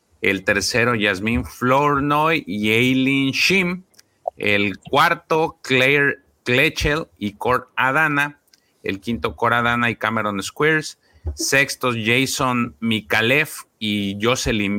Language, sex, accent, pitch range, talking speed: Spanish, male, Mexican, 105-140 Hz, 105 wpm